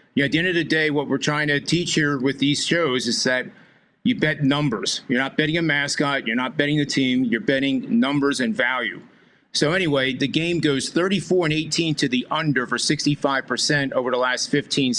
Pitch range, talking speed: 135-160 Hz, 215 wpm